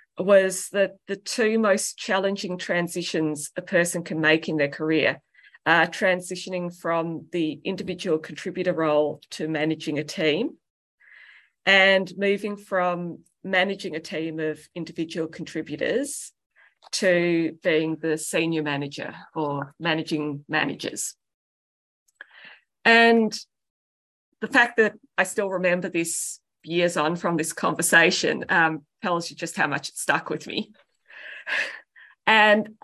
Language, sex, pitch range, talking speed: English, female, 160-200 Hz, 120 wpm